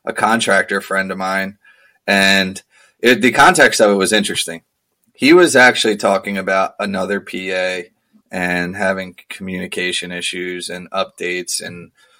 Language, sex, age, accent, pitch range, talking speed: English, male, 20-39, American, 95-115 Hz, 135 wpm